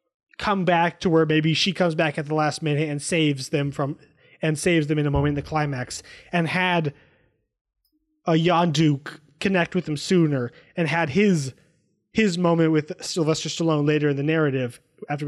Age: 20-39